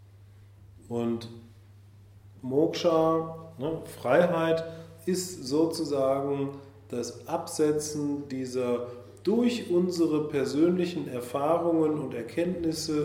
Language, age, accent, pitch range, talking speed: German, 30-49, German, 100-145 Hz, 70 wpm